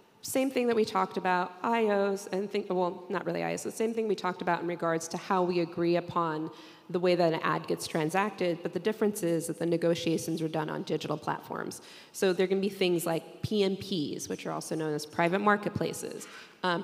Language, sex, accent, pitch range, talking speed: English, female, American, 170-195 Hz, 215 wpm